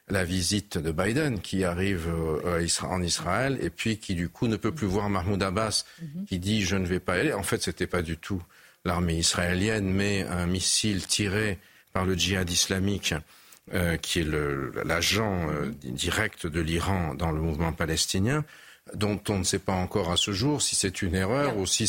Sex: male